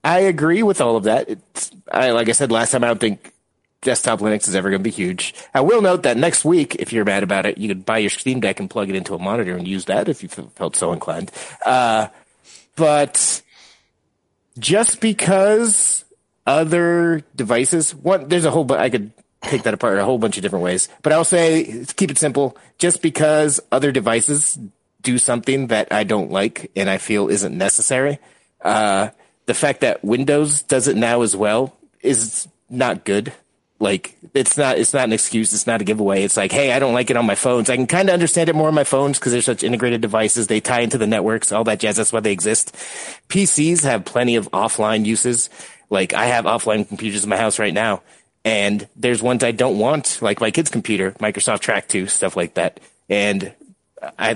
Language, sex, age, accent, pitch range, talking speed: English, male, 30-49, American, 110-150 Hz, 215 wpm